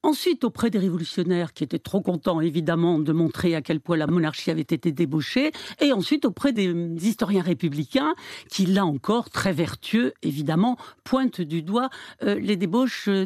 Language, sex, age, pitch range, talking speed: French, female, 60-79, 175-270 Hz, 165 wpm